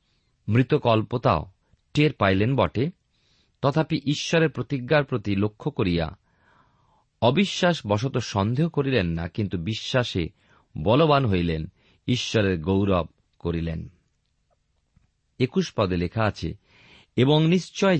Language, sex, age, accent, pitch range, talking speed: Bengali, male, 40-59, native, 95-155 Hz, 95 wpm